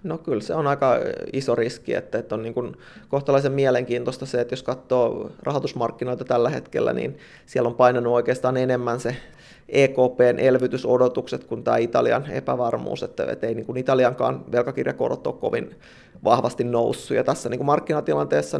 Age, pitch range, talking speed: 30-49, 120-130 Hz, 160 wpm